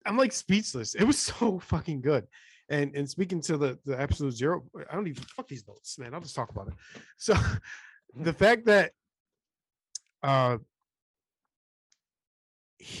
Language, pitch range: English, 125-165 Hz